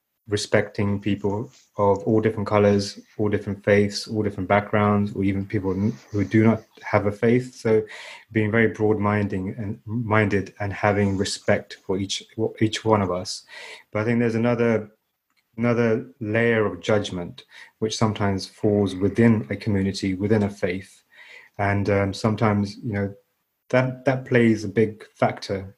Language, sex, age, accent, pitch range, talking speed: English, male, 30-49, British, 100-115 Hz, 150 wpm